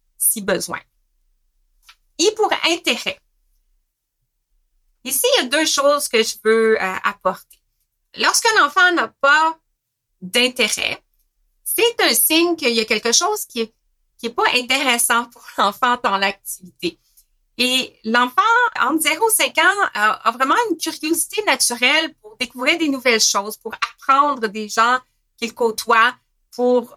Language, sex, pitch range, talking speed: French, female, 225-290 Hz, 140 wpm